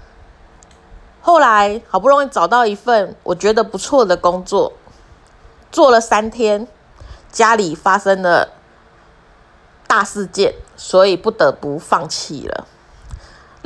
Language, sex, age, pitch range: Chinese, female, 30-49, 180-255 Hz